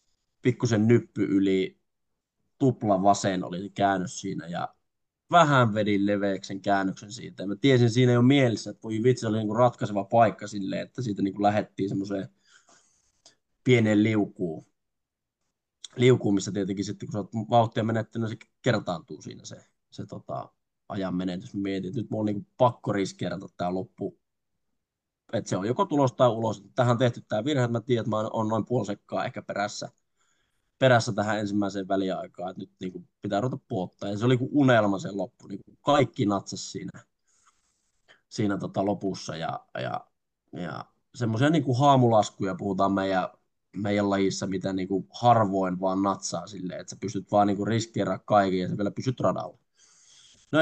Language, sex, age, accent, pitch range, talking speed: Finnish, male, 20-39, native, 100-120 Hz, 160 wpm